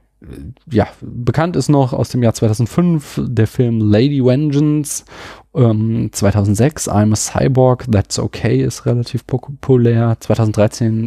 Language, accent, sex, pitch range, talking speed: German, German, male, 110-145 Hz, 120 wpm